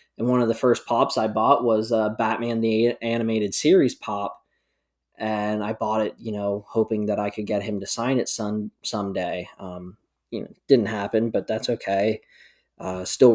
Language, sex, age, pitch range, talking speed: English, male, 20-39, 100-125 Hz, 190 wpm